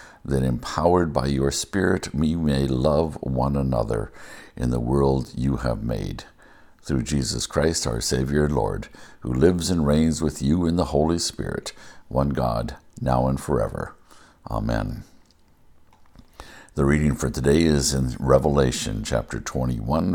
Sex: male